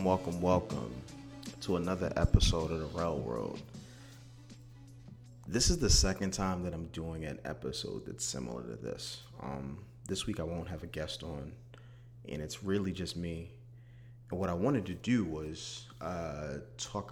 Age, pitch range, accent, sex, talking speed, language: 30-49, 85-120 Hz, American, male, 160 wpm, English